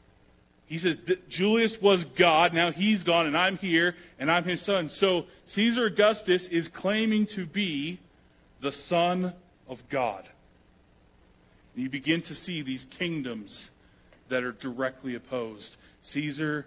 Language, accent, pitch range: English, American, 120-160 Hz